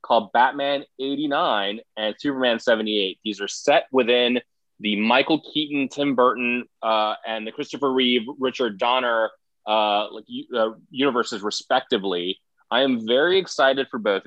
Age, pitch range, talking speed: 20-39, 105-130 Hz, 140 wpm